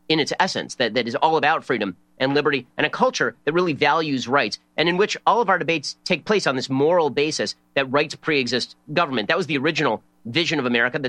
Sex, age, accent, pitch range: male, 40-59, American, 125-160 Hz